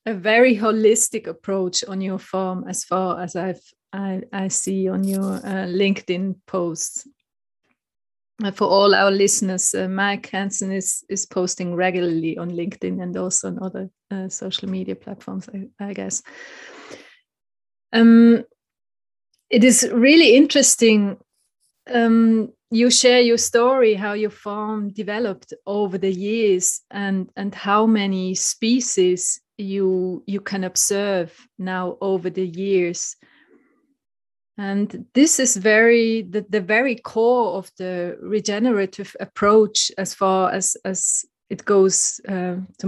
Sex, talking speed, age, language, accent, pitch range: female, 130 wpm, 30-49, English, Swiss, 185-215 Hz